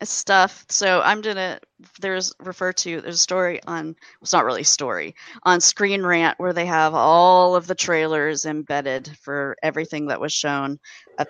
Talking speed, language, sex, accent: 180 wpm, English, female, American